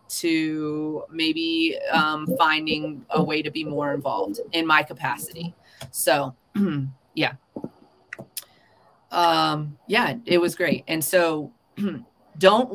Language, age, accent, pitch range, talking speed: English, 20-39, American, 165-200 Hz, 110 wpm